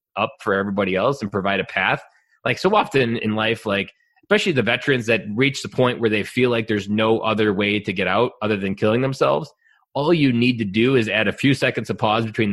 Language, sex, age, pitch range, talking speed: English, male, 20-39, 100-120 Hz, 235 wpm